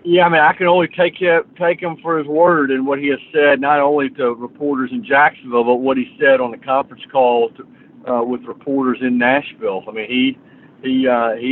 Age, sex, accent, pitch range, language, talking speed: 50-69, male, American, 135-175 Hz, English, 230 wpm